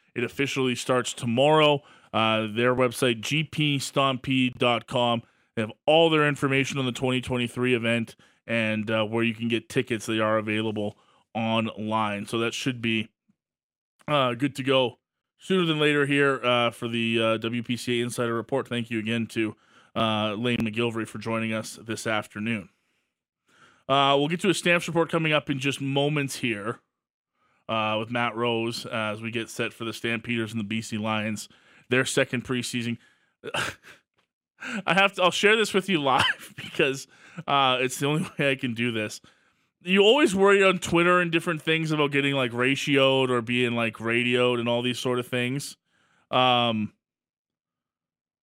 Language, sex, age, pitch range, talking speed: English, male, 20-39, 115-150 Hz, 165 wpm